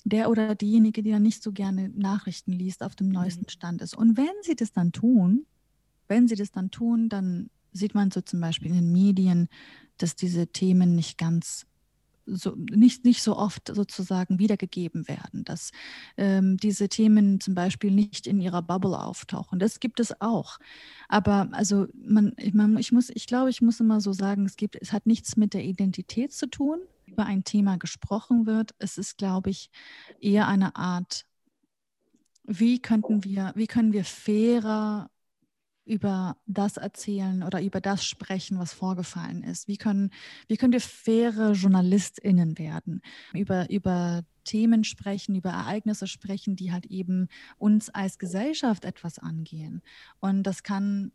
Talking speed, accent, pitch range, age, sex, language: 165 wpm, German, 185-220 Hz, 30-49, female, German